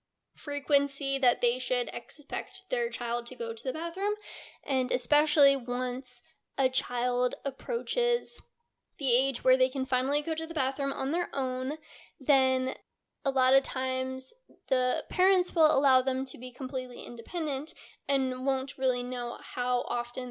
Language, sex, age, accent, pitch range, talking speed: English, female, 10-29, American, 250-280 Hz, 150 wpm